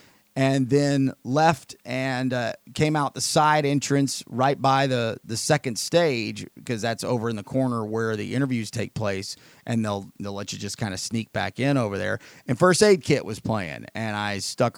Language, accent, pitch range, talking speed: English, American, 115-155 Hz, 200 wpm